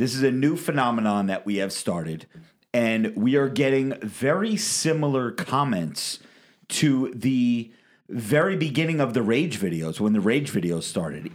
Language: English